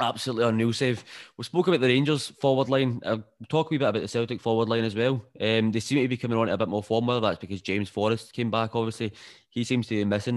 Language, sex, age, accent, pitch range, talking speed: English, male, 20-39, British, 105-120 Hz, 265 wpm